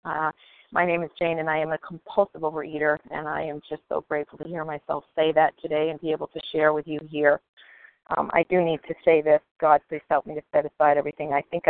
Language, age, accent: English, 50-69, American